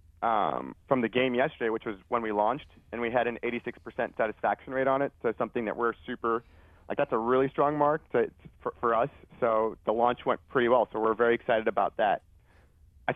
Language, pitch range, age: English, 110-130 Hz, 30-49